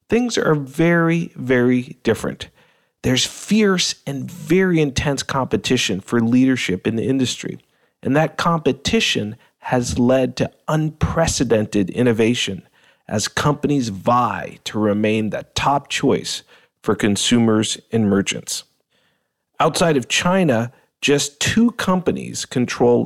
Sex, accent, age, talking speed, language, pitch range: male, American, 40-59, 110 wpm, English, 110-155 Hz